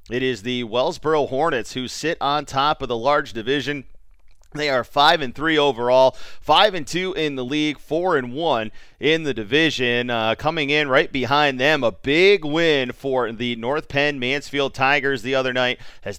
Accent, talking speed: American, 185 wpm